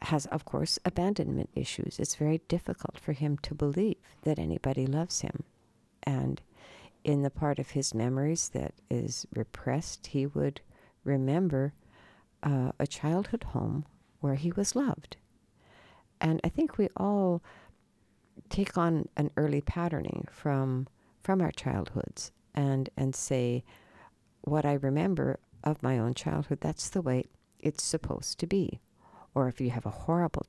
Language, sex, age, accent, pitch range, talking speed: Swedish, female, 60-79, American, 125-165 Hz, 145 wpm